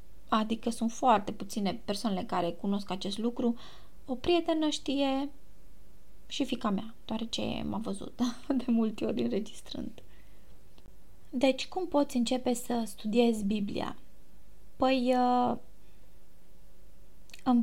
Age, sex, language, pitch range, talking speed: 20-39, female, Romanian, 230-270 Hz, 110 wpm